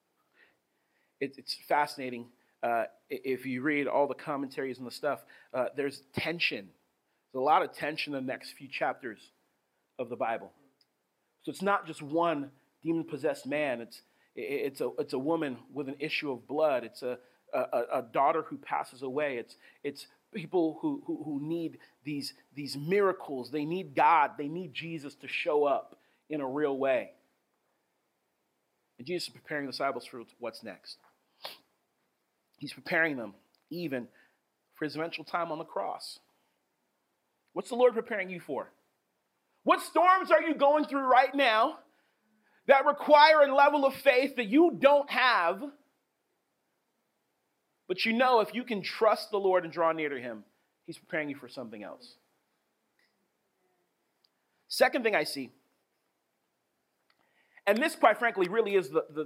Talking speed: 155 wpm